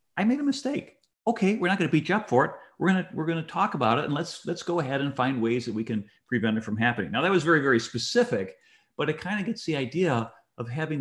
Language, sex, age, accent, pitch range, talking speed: English, male, 50-69, American, 120-165 Hz, 290 wpm